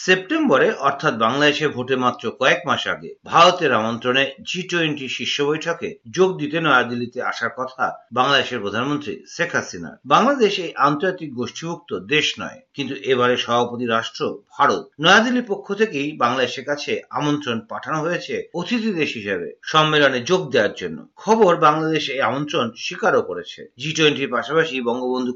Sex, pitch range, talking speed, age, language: male, 130-185 Hz, 105 wpm, 50-69, Bengali